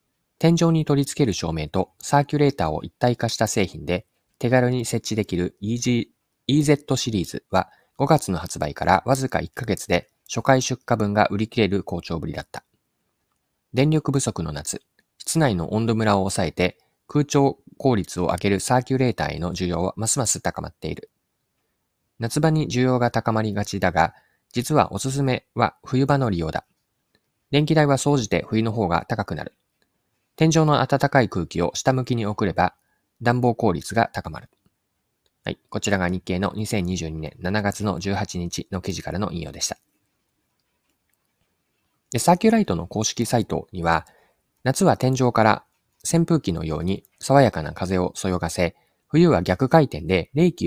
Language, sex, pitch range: Japanese, male, 90-135 Hz